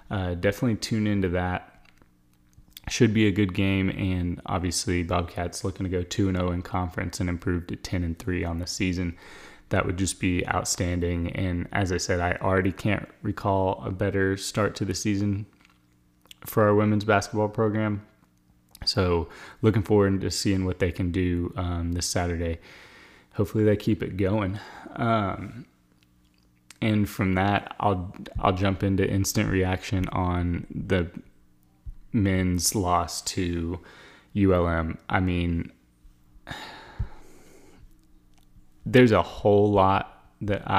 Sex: male